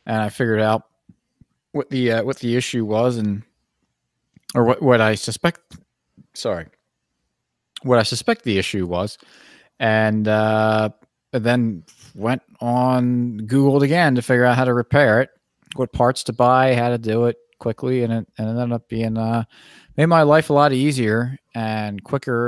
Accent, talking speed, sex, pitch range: American, 170 wpm, male, 100-125 Hz